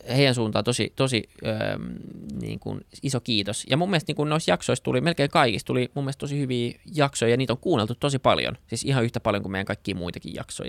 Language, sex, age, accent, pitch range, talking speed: Finnish, male, 20-39, native, 105-125 Hz, 225 wpm